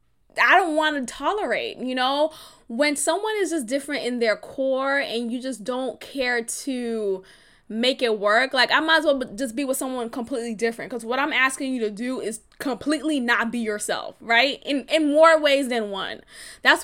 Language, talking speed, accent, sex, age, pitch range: English, 195 wpm, American, female, 10-29, 225-275 Hz